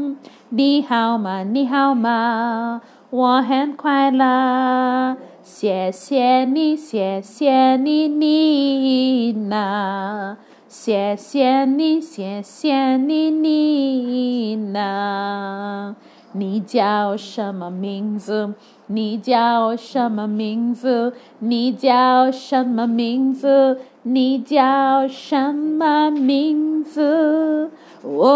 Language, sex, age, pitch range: English, female, 30-49, 210-290 Hz